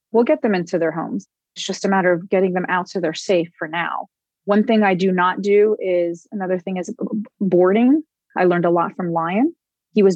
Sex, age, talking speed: female, 30-49, 225 wpm